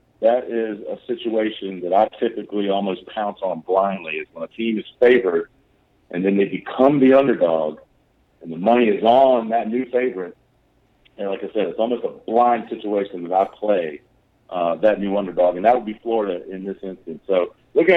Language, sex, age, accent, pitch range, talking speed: English, male, 50-69, American, 100-135 Hz, 190 wpm